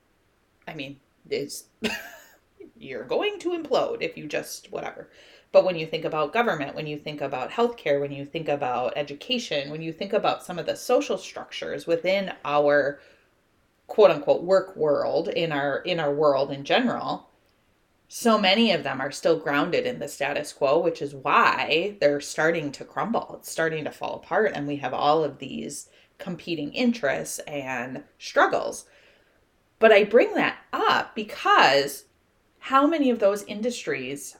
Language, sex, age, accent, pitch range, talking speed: English, female, 30-49, American, 145-220 Hz, 160 wpm